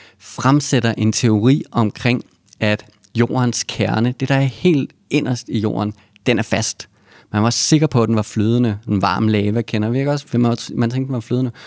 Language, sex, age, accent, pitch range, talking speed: Danish, male, 30-49, native, 105-125 Hz, 195 wpm